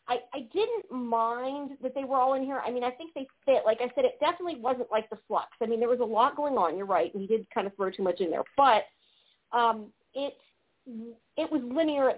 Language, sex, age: English, female, 40-59